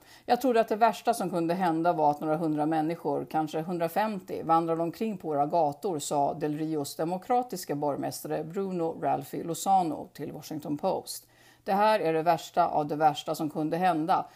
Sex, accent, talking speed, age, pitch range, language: female, Swedish, 175 wpm, 50-69, 155-200 Hz, English